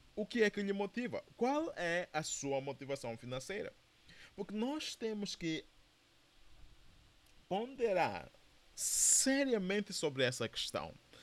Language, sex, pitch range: Portuguese, male, 130-195 Hz